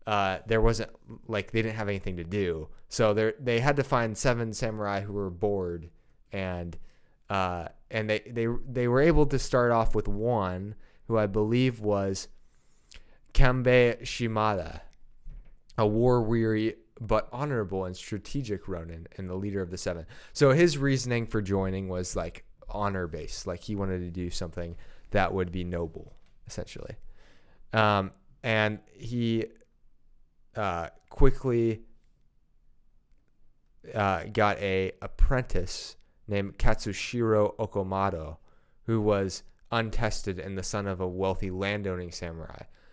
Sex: male